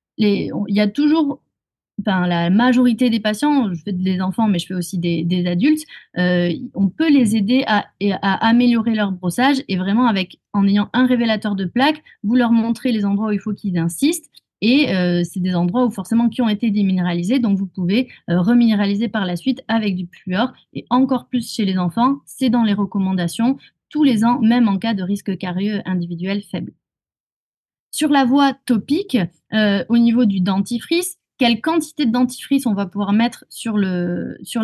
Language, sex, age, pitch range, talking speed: French, female, 30-49, 195-250 Hz, 195 wpm